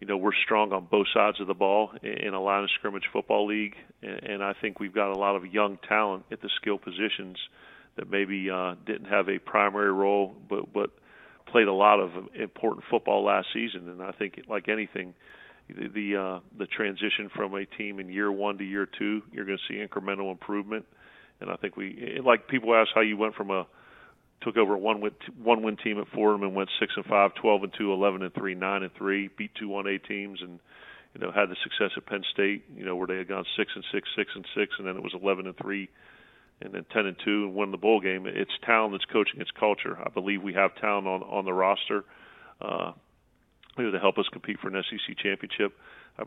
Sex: male